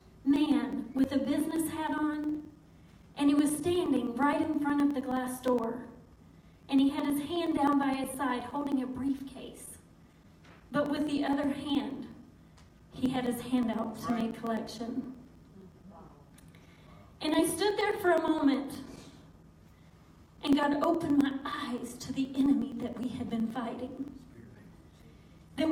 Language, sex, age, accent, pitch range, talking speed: English, female, 40-59, American, 265-320 Hz, 145 wpm